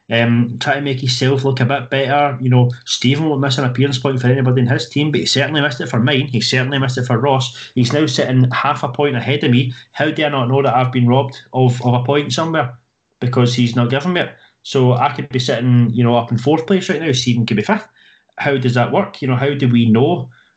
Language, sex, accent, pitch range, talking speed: English, male, British, 120-145 Hz, 265 wpm